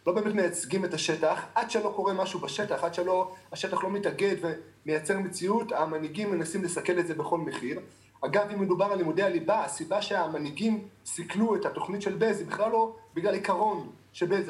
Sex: male